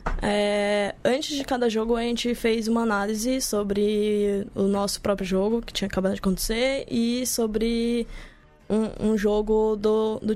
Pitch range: 210-250 Hz